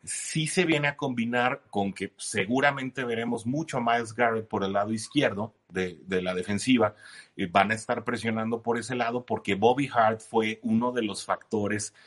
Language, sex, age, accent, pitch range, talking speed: Spanish, male, 30-49, Mexican, 100-120 Hz, 190 wpm